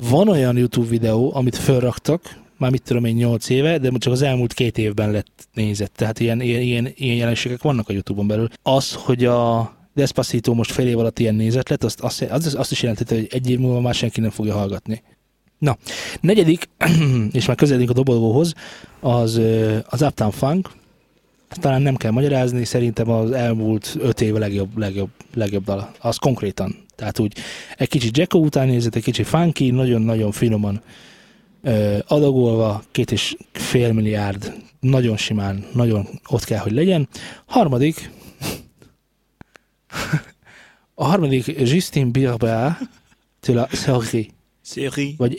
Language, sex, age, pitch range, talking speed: Hungarian, male, 20-39, 110-135 Hz, 145 wpm